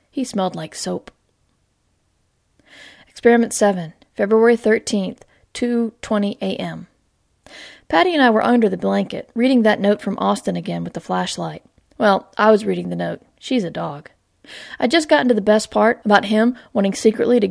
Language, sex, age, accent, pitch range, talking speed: English, female, 40-59, American, 190-235 Hz, 160 wpm